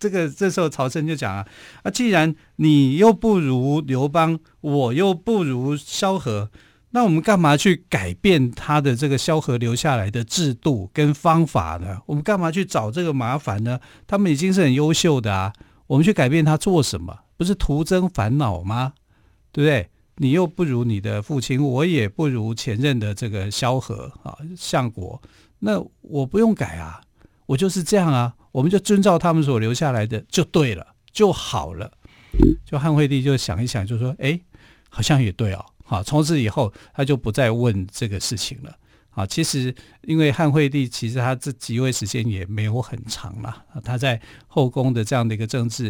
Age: 50-69